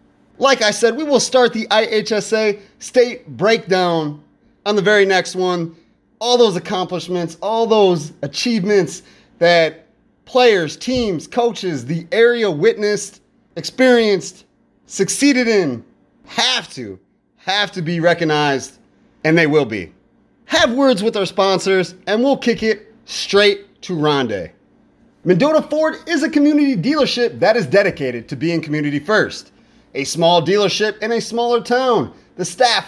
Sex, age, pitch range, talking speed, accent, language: male, 30-49, 175-245 Hz, 135 wpm, American, English